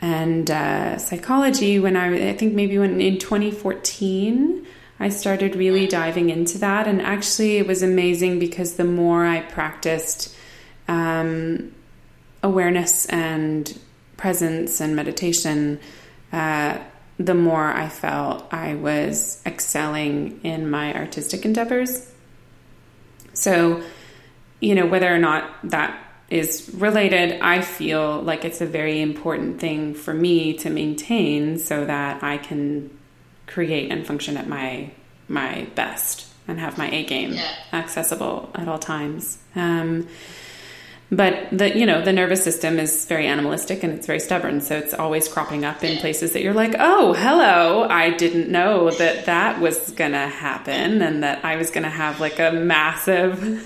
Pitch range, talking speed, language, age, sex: 155-185 Hz, 145 wpm, English, 20-39, female